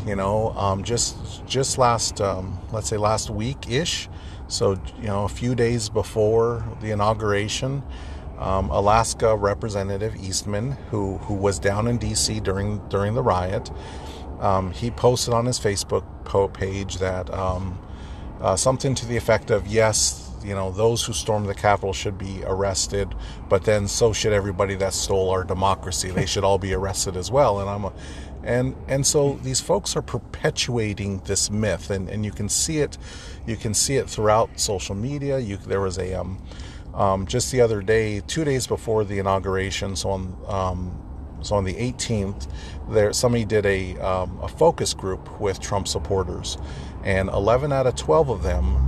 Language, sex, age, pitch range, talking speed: English, male, 40-59, 95-110 Hz, 175 wpm